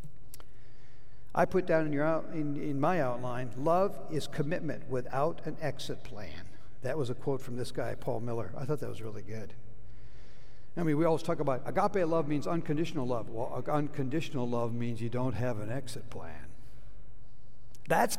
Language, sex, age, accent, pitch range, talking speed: English, male, 60-79, American, 120-165 Hz, 170 wpm